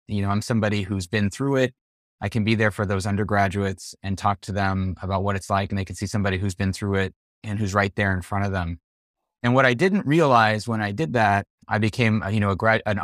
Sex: male